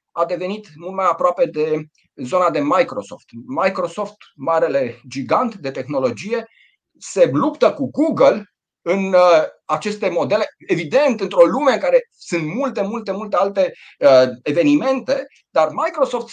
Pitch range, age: 170-265 Hz, 30-49